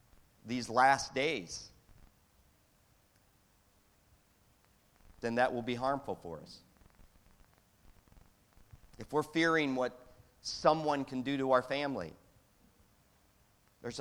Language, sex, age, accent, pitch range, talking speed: English, male, 50-69, American, 100-135 Hz, 90 wpm